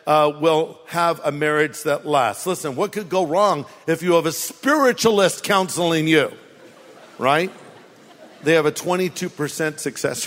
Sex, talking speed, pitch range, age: male, 145 wpm, 160-205 Hz, 50-69